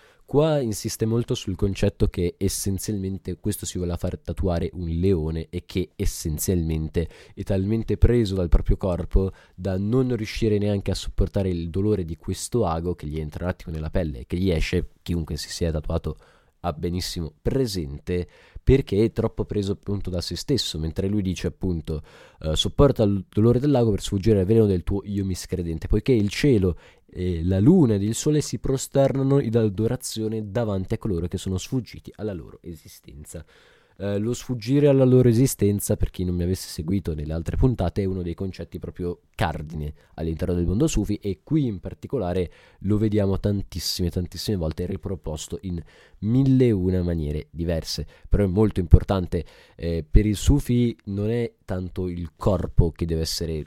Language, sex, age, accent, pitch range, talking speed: Italian, male, 20-39, native, 85-110 Hz, 175 wpm